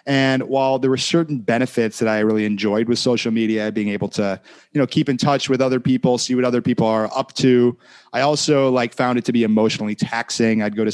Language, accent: English, American